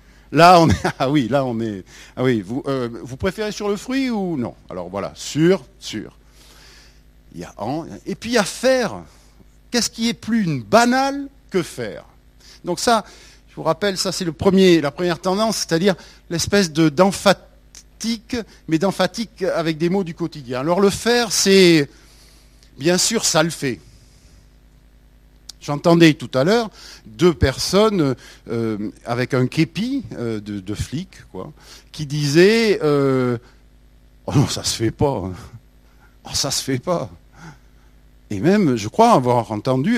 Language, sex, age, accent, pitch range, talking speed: French, male, 50-69, French, 115-190 Hz, 160 wpm